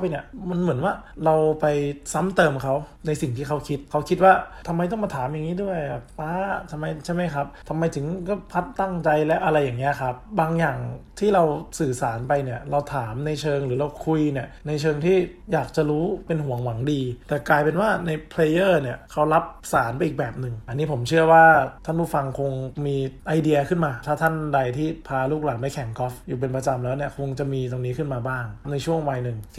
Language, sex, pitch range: English, male, 135-165 Hz